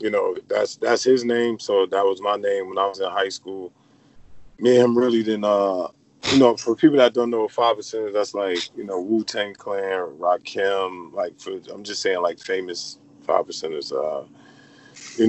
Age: 20-39